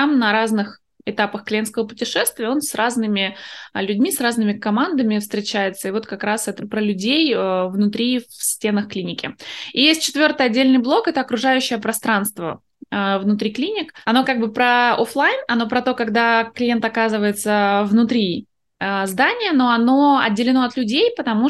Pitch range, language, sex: 200-245 Hz, Russian, female